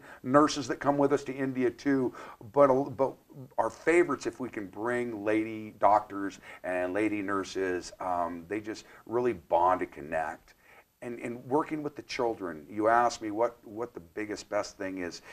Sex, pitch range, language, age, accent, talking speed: male, 110-150 Hz, English, 50-69, American, 170 wpm